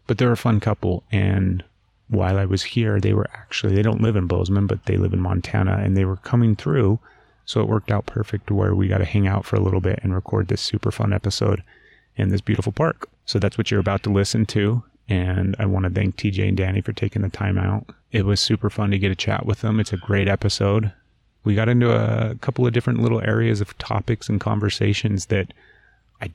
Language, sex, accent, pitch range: English, male, American, 95-110 Hz